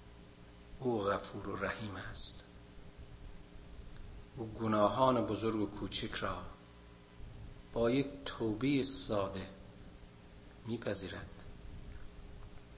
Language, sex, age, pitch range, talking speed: Persian, male, 50-69, 95-145 Hz, 75 wpm